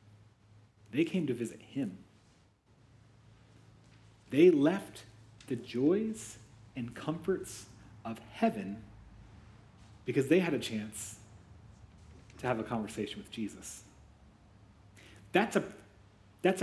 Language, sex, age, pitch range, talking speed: English, male, 40-59, 105-125 Hz, 90 wpm